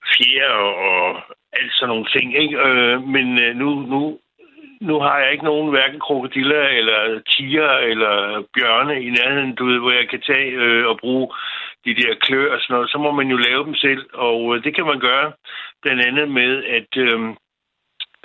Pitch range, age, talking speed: 120-145 Hz, 60-79, 185 wpm